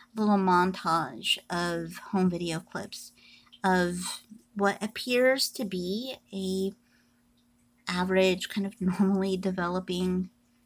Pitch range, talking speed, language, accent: 160-205 Hz, 95 wpm, English, American